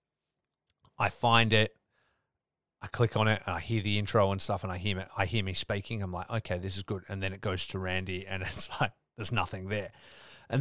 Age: 30-49